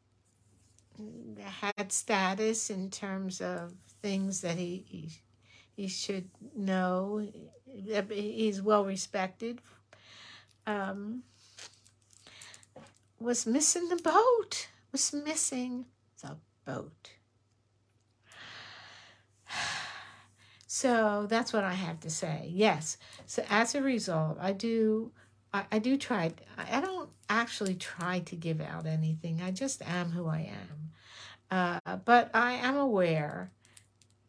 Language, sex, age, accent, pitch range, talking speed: English, female, 60-79, American, 155-225 Hz, 110 wpm